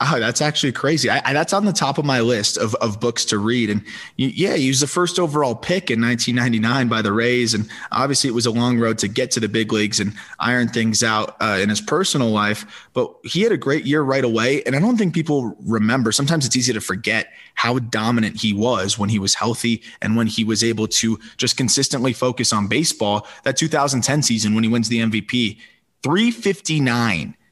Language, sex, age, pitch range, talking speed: English, male, 20-39, 110-135 Hz, 215 wpm